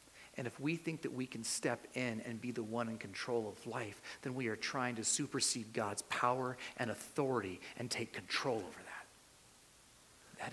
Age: 30-49